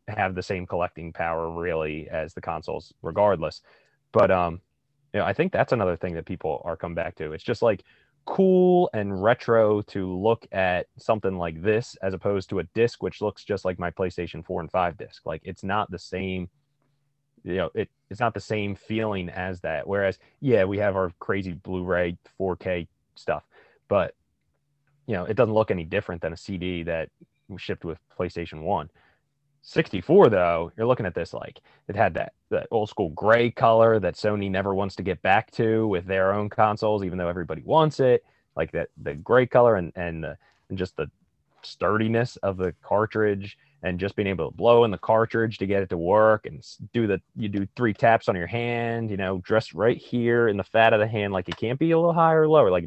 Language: English